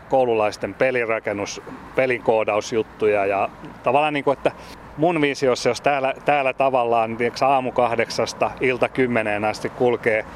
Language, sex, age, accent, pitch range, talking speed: Finnish, male, 30-49, native, 105-130 Hz, 115 wpm